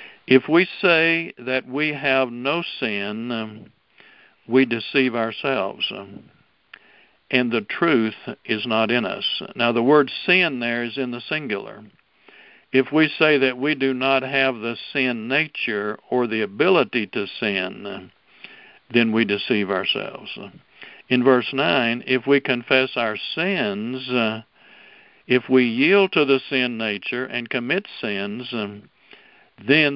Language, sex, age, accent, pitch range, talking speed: English, male, 60-79, American, 115-140 Hz, 130 wpm